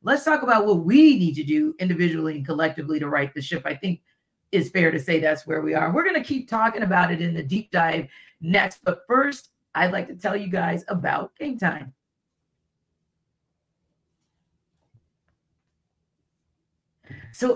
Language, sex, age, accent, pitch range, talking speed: English, female, 40-59, American, 170-220 Hz, 165 wpm